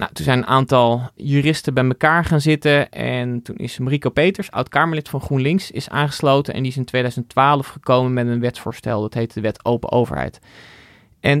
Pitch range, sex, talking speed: 125-150 Hz, male, 190 wpm